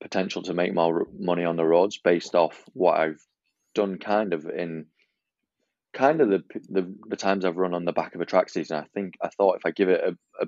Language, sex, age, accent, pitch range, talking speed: English, male, 20-39, British, 80-100 Hz, 235 wpm